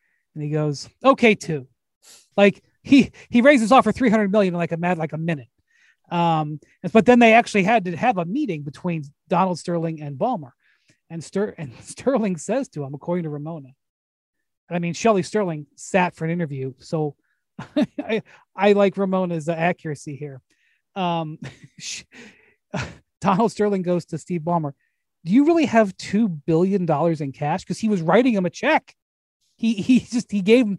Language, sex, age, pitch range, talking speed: English, male, 30-49, 155-205 Hz, 175 wpm